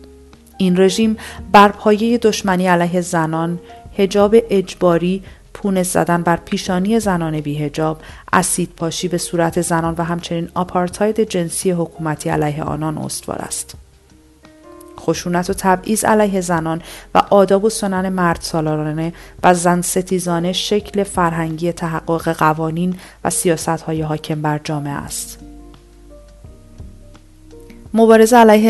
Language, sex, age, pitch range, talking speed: Persian, female, 40-59, 155-190 Hz, 110 wpm